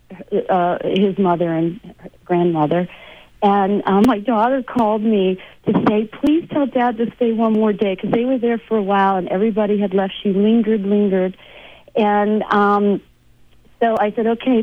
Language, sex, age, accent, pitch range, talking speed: English, female, 50-69, American, 185-225 Hz, 170 wpm